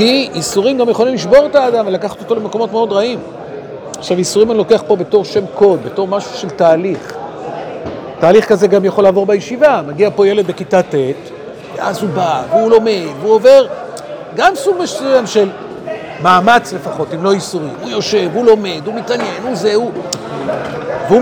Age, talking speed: 50-69, 175 wpm